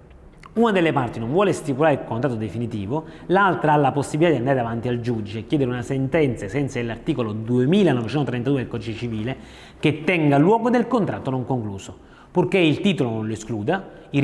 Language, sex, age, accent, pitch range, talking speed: Italian, male, 30-49, native, 120-175 Hz, 175 wpm